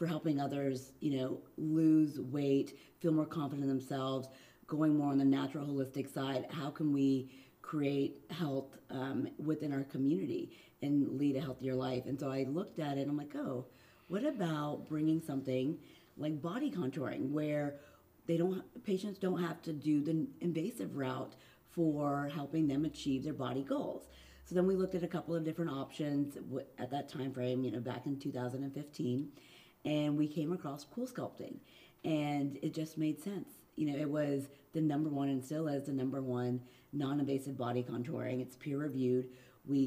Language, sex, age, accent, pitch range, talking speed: English, female, 40-59, American, 130-150 Hz, 175 wpm